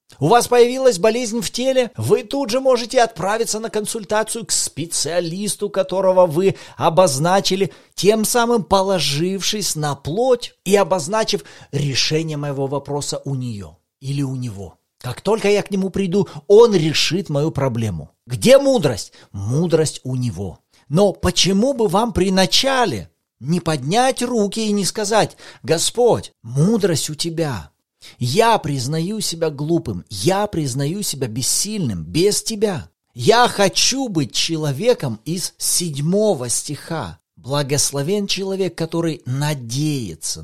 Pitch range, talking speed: 135-200 Hz, 125 wpm